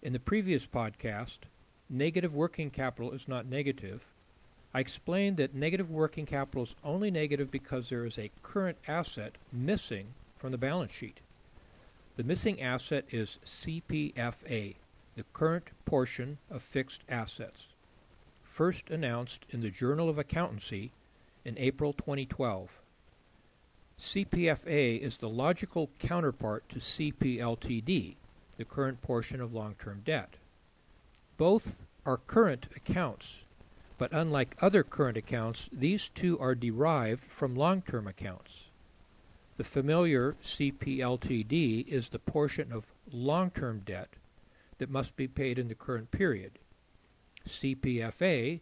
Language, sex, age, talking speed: English, male, 60-79, 120 wpm